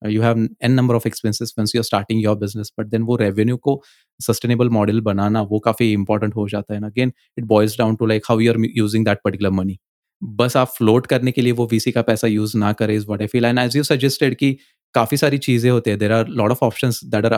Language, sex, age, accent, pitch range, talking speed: Hindi, male, 20-39, native, 105-130 Hz, 225 wpm